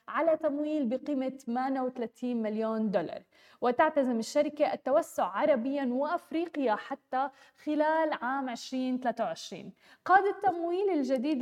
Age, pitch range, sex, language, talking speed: 20-39, 240-295 Hz, female, Arabic, 95 wpm